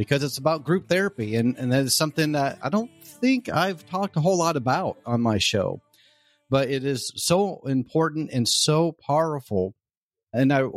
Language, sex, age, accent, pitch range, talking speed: English, male, 40-59, American, 115-160 Hz, 185 wpm